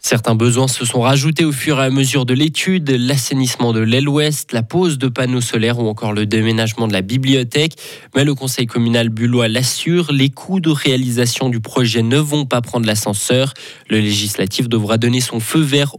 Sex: male